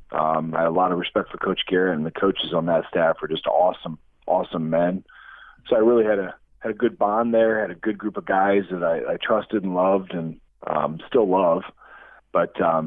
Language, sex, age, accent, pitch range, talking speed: English, male, 40-59, American, 90-110 Hz, 225 wpm